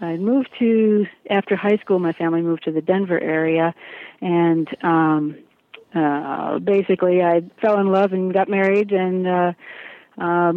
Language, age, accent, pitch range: English, 50-69, American, 165-200 Hz